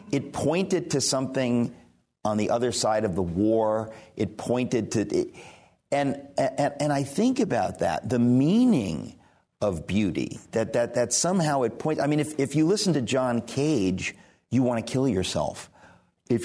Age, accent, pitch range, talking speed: 50-69, American, 105-135 Hz, 170 wpm